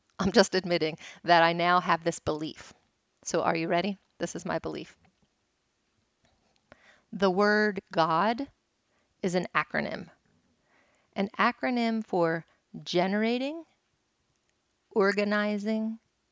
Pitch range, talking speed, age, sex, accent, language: 175-210 Hz, 105 wpm, 30-49, female, American, English